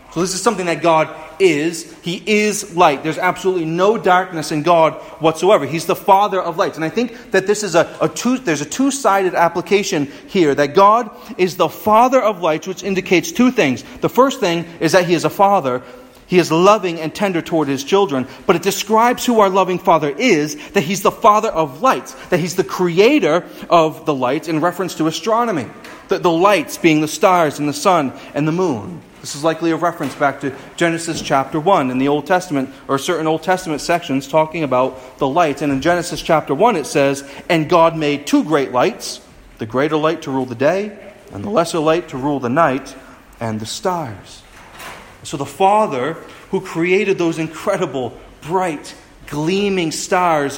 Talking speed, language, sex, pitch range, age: 195 wpm, English, male, 150-195 Hz, 40-59